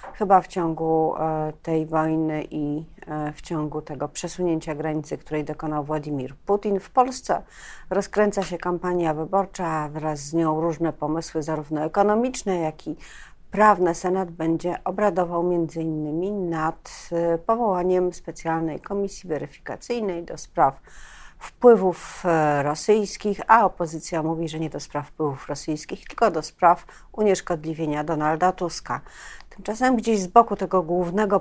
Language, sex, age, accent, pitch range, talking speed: Polish, female, 40-59, native, 155-185 Hz, 125 wpm